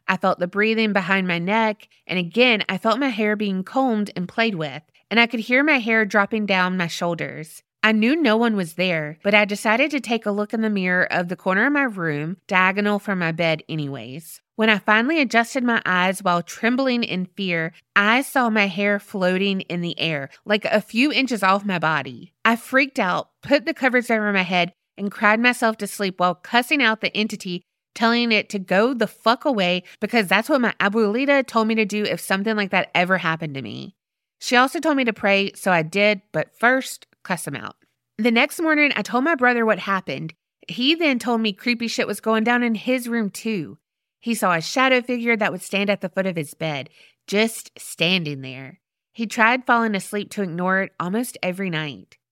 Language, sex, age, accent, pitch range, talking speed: English, female, 20-39, American, 180-230 Hz, 215 wpm